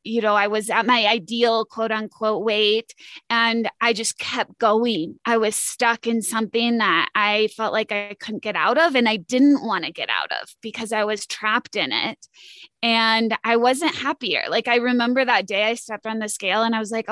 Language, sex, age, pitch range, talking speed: English, female, 20-39, 220-240 Hz, 215 wpm